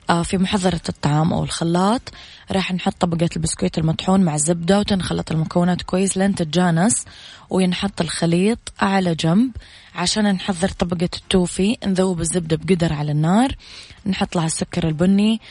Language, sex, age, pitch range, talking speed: Arabic, female, 20-39, 165-190 Hz, 130 wpm